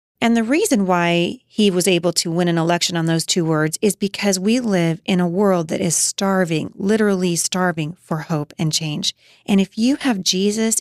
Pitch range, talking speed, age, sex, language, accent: 165-210 Hz, 200 wpm, 30-49, female, English, American